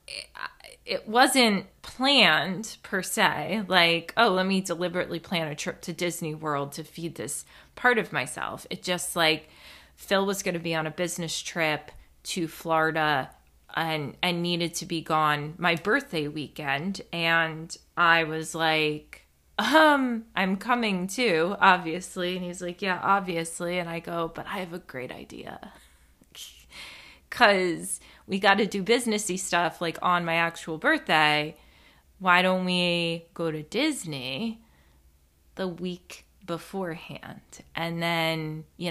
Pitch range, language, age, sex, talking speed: 155-195 Hz, English, 20-39, female, 140 wpm